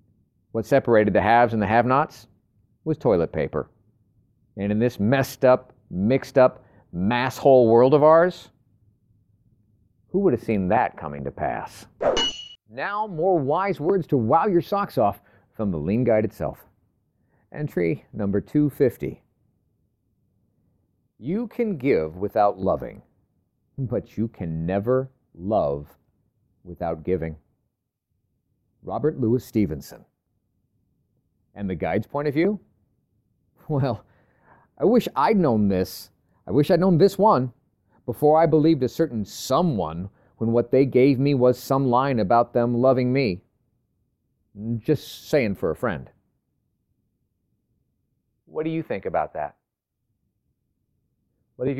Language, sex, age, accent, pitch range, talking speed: English, male, 40-59, American, 100-135 Hz, 125 wpm